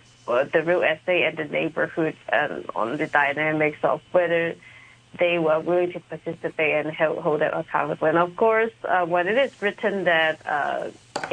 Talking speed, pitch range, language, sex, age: 165 wpm, 160-185 Hz, English, female, 30-49